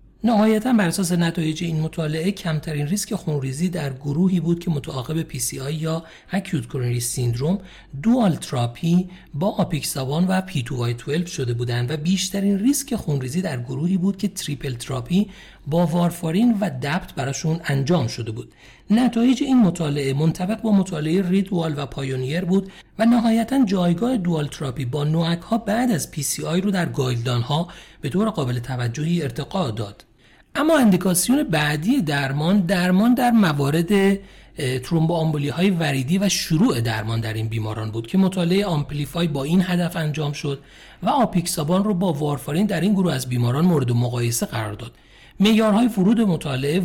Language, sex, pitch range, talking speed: Persian, male, 135-195 Hz, 160 wpm